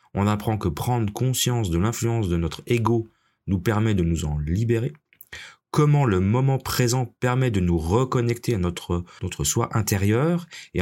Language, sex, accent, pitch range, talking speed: French, male, French, 95-125 Hz, 165 wpm